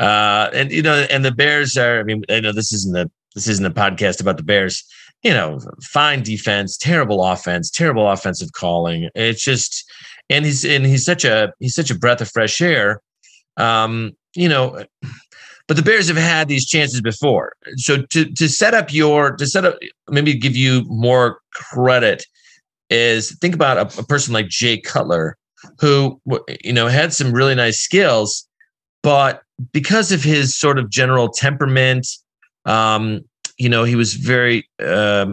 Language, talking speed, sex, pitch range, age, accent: English, 175 wpm, male, 105-140 Hz, 40-59, American